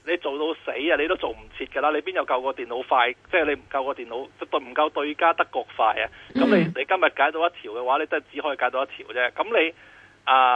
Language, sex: Chinese, male